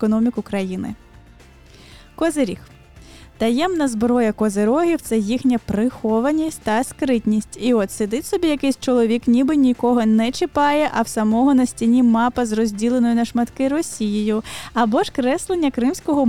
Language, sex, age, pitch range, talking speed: Ukrainian, female, 10-29, 225-280 Hz, 135 wpm